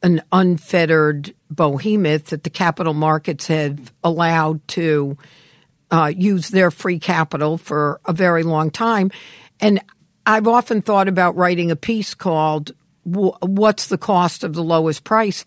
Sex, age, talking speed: female, 60-79, 140 wpm